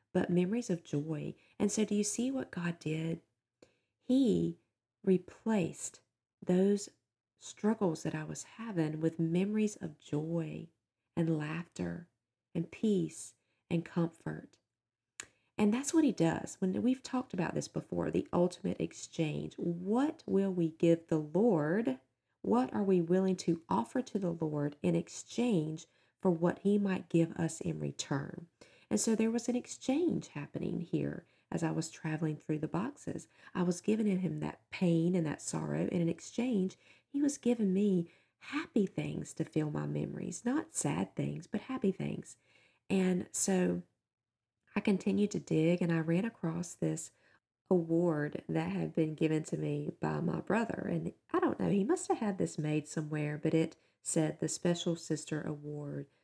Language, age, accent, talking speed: English, 40-59, American, 160 wpm